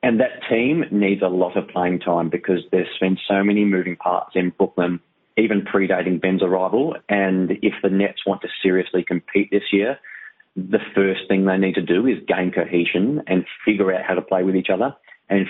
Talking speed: 200 wpm